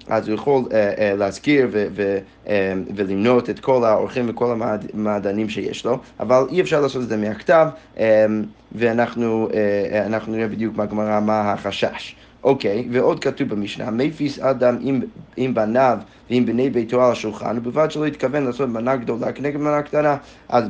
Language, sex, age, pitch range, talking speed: Hebrew, male, 30-49, 110-140 Hz, 165 wpm